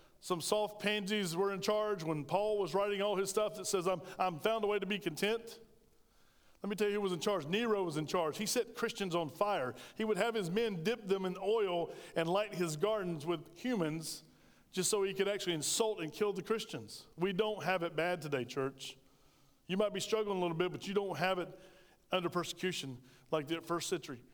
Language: English